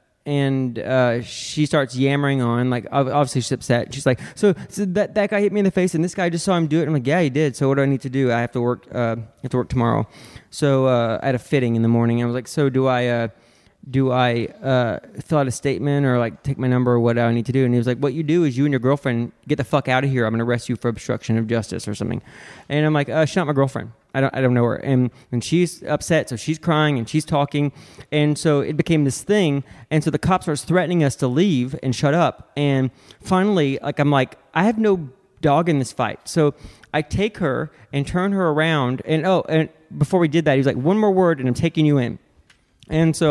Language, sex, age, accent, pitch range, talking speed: English, male, 20-39, American, 125-160 Hz, 275 wpm